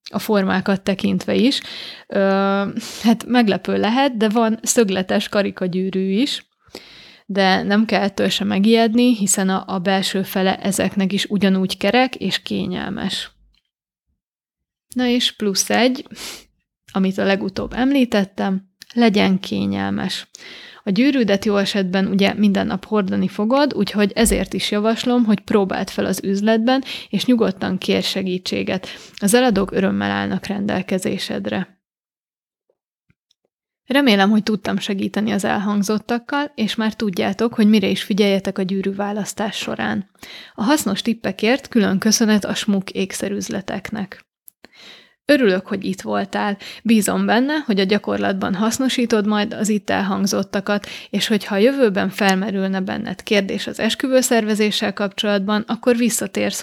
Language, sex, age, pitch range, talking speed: Hungarian, female, 30-49, 195-230 Hz, 125 wpm